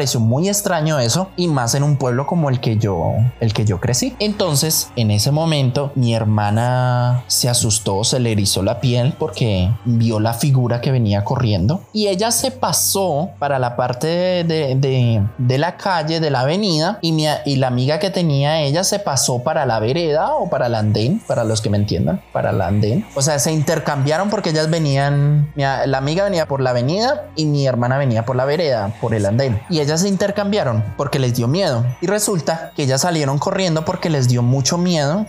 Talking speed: 205 wpm